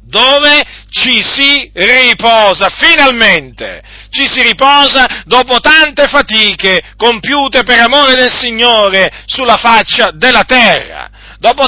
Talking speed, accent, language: 110 wpm, native, Italian